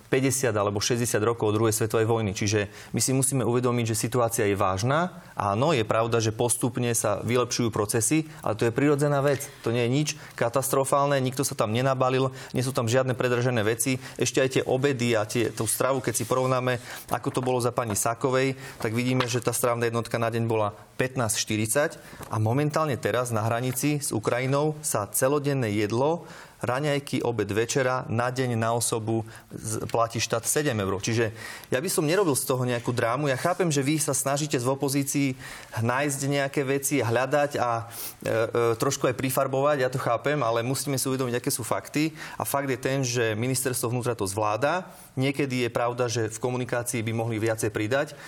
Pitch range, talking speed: 115-135 Hz, 185 wpm